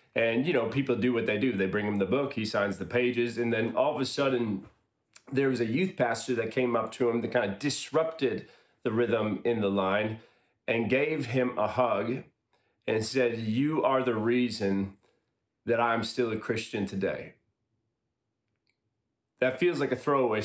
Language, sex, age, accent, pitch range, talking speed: English, male, 30-49, American, 110-130 Hz, 190 wpm